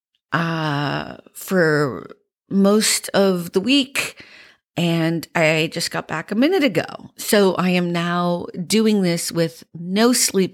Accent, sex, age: American, female, 50-69